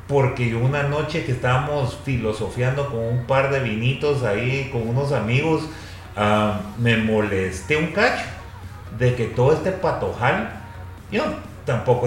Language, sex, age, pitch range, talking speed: Spanish, male, 40-59, 105-140 Hz, 135 wpm